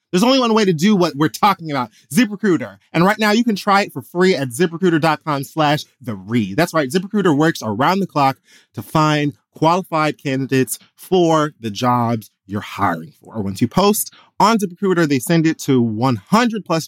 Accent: American